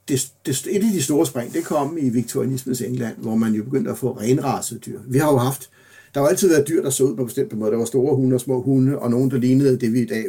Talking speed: 305 wpm